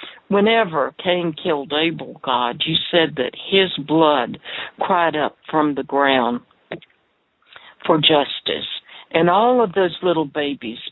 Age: 60-79